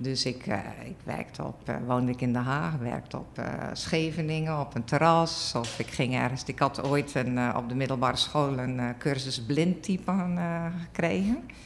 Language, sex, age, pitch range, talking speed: Dutch, female, 50-69, 125-160 Hz, 200 wpm